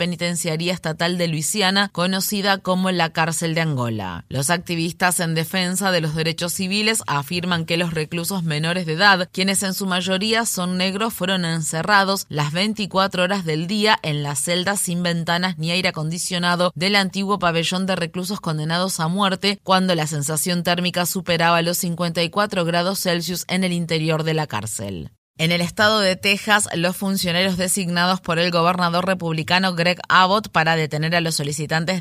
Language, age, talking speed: Spanish, 20-39, 165 wpm